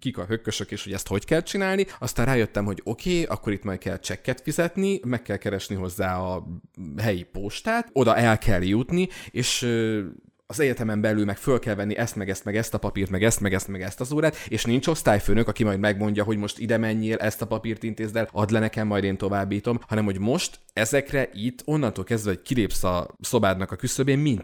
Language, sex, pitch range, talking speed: Hungarian, male, 95-115 Hz, 215 wpm